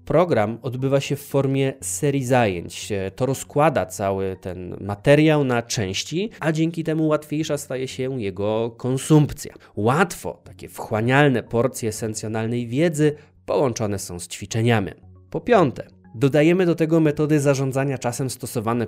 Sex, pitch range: male, 110-150 Hz